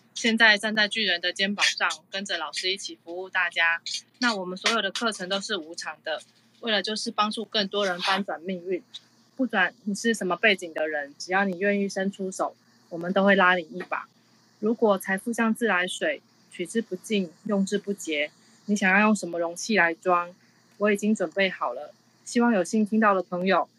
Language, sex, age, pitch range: Chinese, female, 20-39, 175-210 Hz